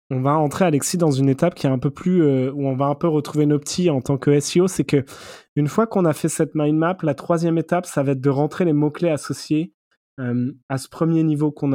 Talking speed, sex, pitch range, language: 265 wpm, male, 135-165 Hz, French